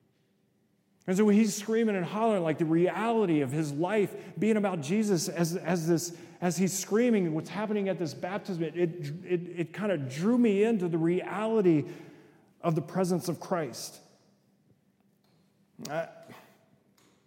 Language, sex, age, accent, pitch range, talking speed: English, male, 40-59, American, 115-170 Hz, 150 wpm